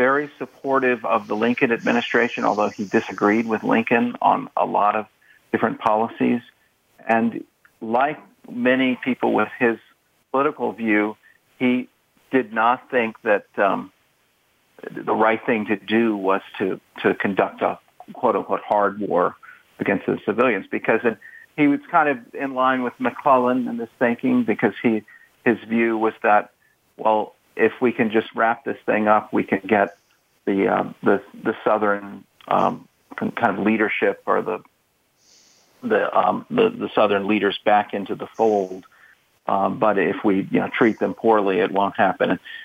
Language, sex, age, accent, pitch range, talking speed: English, male, 50-69, American, 105-125 Hz, 160 wpm